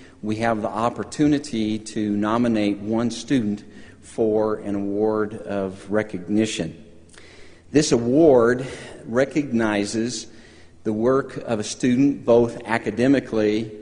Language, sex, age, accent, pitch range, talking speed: English, male, 50-69, American, 105-125 Hz, 100 wpm